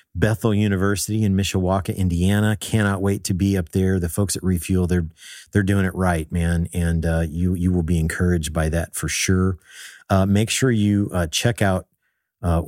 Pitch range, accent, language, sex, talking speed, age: 85-100 Hz, American, English, male, 190 wpm, 50-69